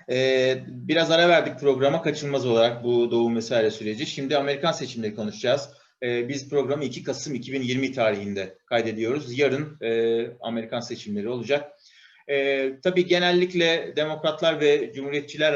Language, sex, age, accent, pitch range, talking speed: Turkish, male, 30-49, native, 115-155 Hz, 130 wpm